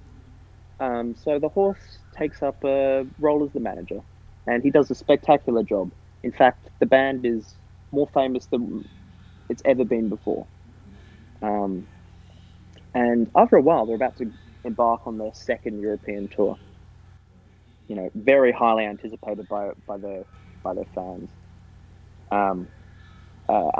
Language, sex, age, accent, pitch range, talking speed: English, male, 20-39, Australian, 95-115 Hz, 140 wpm